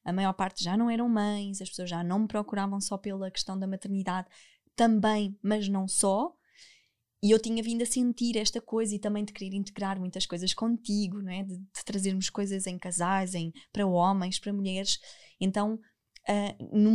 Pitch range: 200-245 Hz